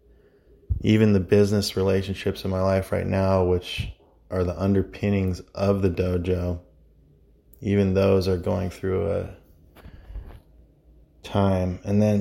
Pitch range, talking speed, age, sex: 90-105 Hz, 125 wpm, 20-39, male